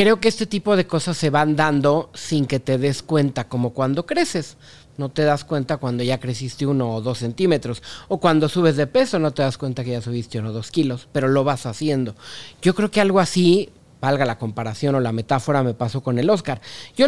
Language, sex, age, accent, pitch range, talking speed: Spanish, male, 40-59, Mexican, 130-170 Hz, 230 wpm